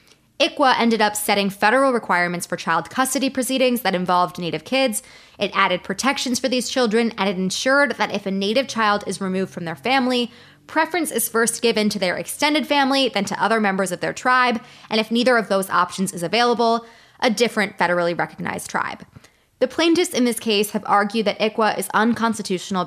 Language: English